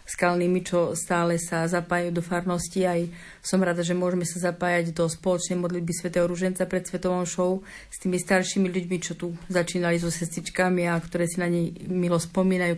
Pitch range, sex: 175-190 Hz, female